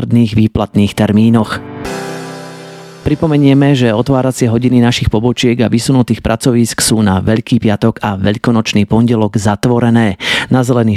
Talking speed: 115 wpm